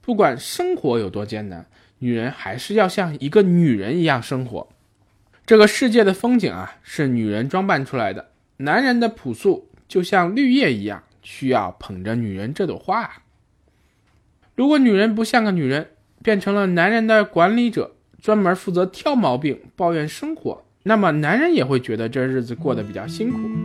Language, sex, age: Chinese, male, 20-39